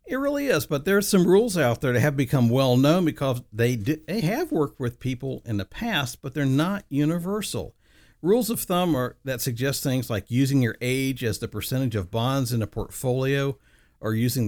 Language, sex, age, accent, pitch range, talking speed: English, male, 50-69, American, 110-140 Hz, 210 wpm